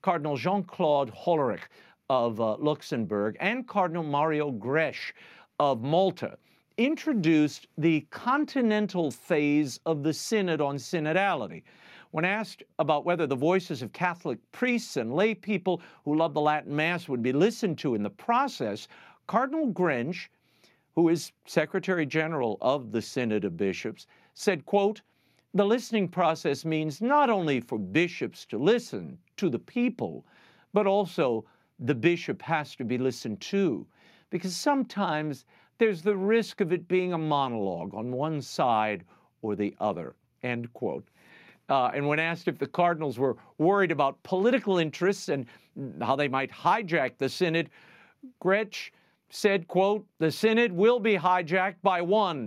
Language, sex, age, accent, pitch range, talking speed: English, male, 50-69, American, 145-200 Hz, 145 wpm